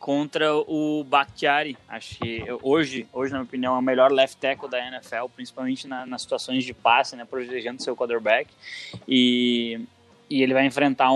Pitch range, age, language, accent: 130-155 Hz, 20-39, English, Brazilian